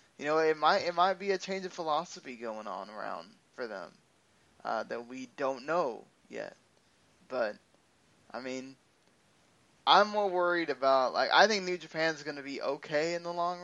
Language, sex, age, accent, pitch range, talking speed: English, male, 20-39, American, 130-155 Hz, 180 wpm